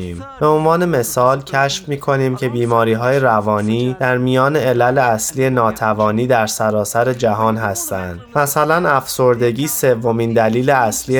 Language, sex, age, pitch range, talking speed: Persian, male, 20-39, 110-135 Hz, 130 wpm